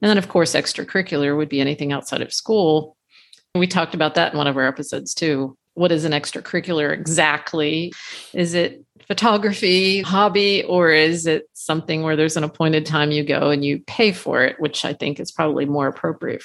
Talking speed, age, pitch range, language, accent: 195 wpm, 50-69, 150-175 Hz, English, American